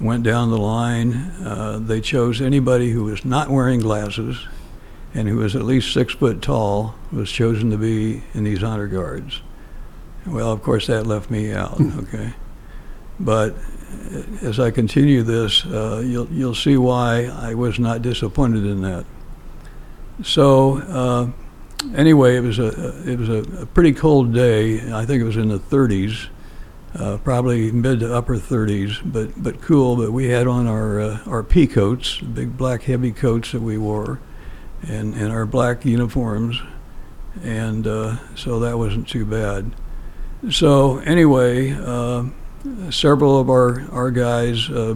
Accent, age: American, 60-79